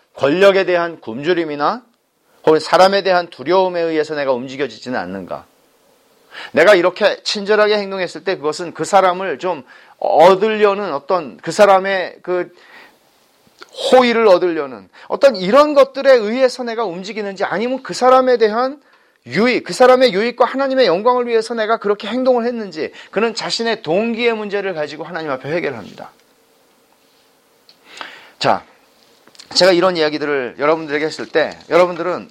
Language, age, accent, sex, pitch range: Korean, 40-59, native, male, 170-235 Hz